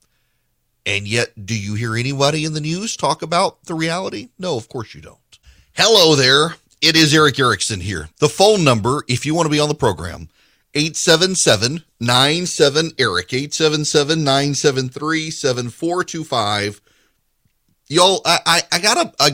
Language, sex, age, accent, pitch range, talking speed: English, male, 40-59, American, 110-160 Hz, 125 wpm